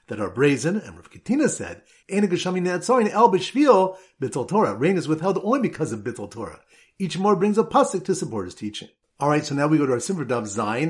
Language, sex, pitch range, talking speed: English, male, 125-180 Hz, 170 wpm